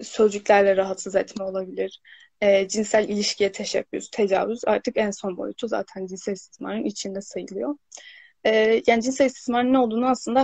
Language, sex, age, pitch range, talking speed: Turkish, female, 10-29, 200-240 Hz, 145 wpm